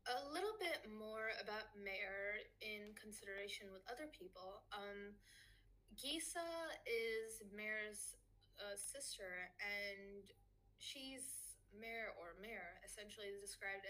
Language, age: English, 20-39